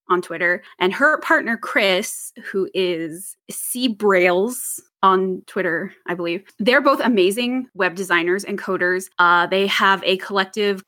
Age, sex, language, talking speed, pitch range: 20-39, female, English, 145 wpm, 185-245 Hz